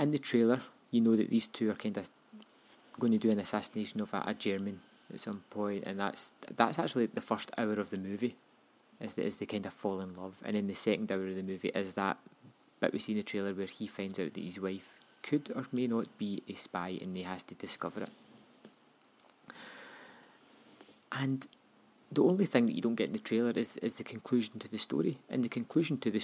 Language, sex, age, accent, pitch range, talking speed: English, male, 20-39, British, 100-120 Hz, 230 wpm